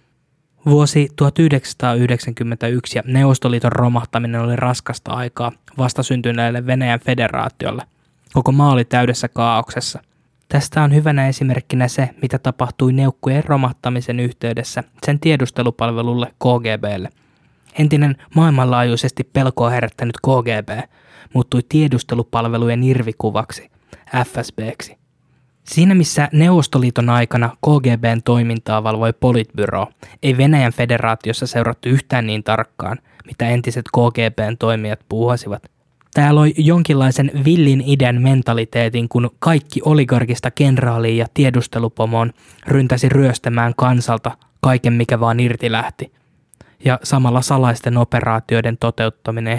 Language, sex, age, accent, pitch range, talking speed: Finnish, male, 20-39, native, 115-135 Hz, 100 wpm